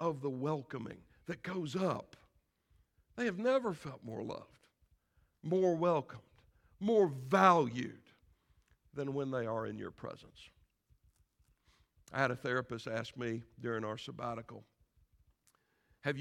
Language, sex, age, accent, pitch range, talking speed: English, male, 60-79, American, 115-185 Hz, 120 wpm